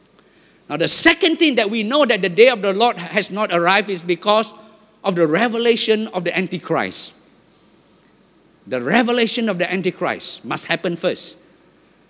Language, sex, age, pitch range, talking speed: English, male, 50-69, 175-290 Hz, 160 wpm